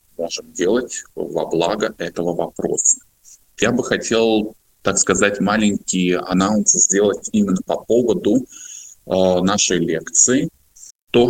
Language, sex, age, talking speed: Russian, male, 20-39, 110 wpm